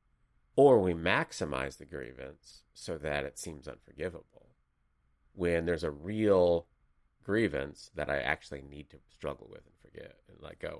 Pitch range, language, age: 75-90 Hz, English, 30-49